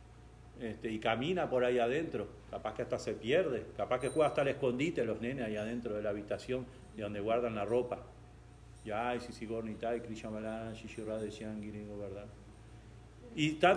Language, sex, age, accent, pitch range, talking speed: Spanish, male, 40-59, Argentinian, 120-185 Hz, 140 wpm